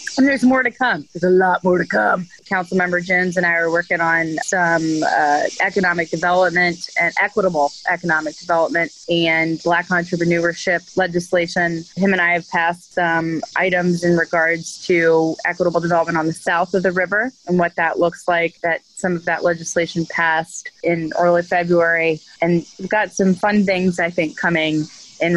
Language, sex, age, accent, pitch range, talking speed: English, female, 20-39, American, 160-185 Hz, 170 wpm